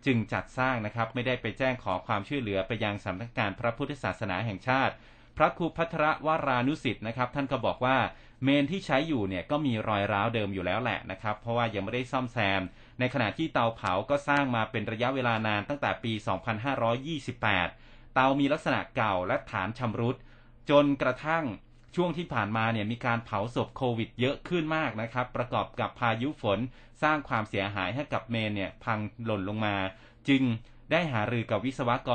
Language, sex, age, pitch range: Thai, male, 30-49, 110-135 Hz